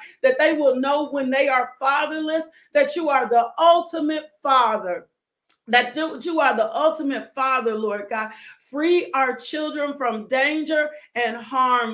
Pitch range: 220-260 Hz